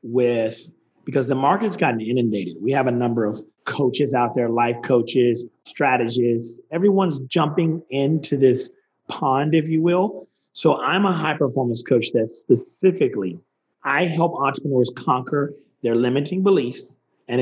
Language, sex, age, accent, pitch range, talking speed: English, male, 30-49, American, 135-195 Hz, 140 wpm